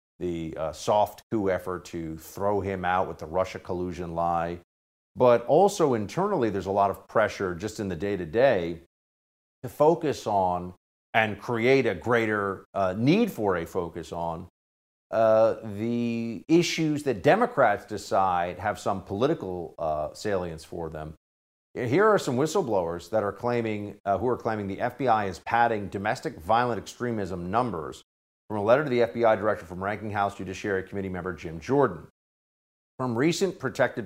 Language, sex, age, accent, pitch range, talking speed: English, male, 50-69, American, 90-120 Hz, 155 wpm